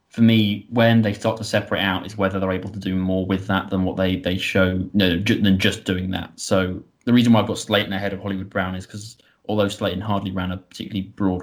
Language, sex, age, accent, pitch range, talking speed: English, male, 20-39, British, 95-105 Hz, 255 wpm